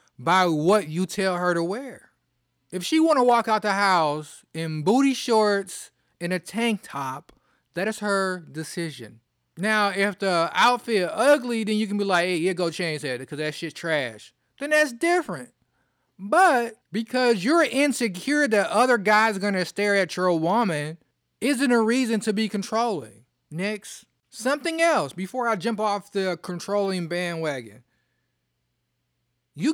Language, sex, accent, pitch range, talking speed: English, male, American, 155-215 Hz, 155 wpm